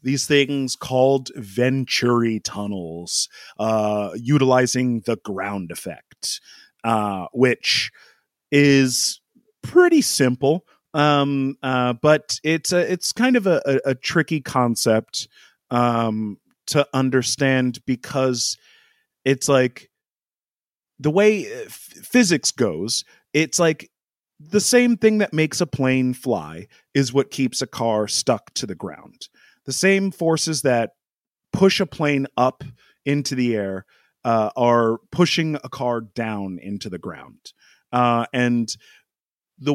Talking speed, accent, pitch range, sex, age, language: 120 wpm, American, 115-160 Hz, male, 30-49, English